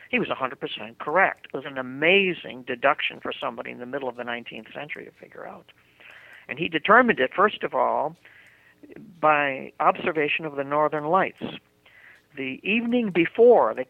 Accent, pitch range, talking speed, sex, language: American, 120-150 Hz, 160 wpm, male, English